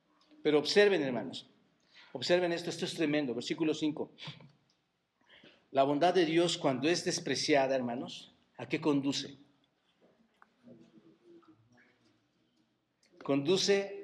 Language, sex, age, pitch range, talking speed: Spanish, male, 50-69, 150-190 Hz, 95 wpm